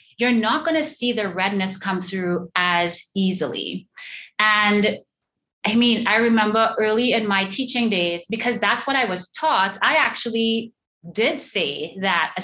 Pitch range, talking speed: 190-235 Hz, 155 wpm